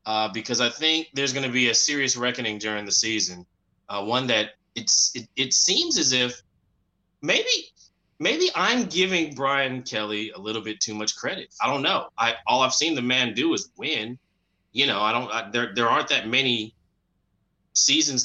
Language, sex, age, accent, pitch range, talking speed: English, male, 20-39, American, 110-155 Hz, 190 wpm